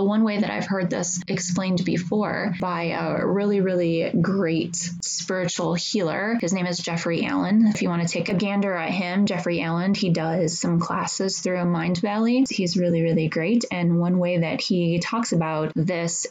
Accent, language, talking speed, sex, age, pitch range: American, English, 190 wpm, female, 20-39, 165-200 Hz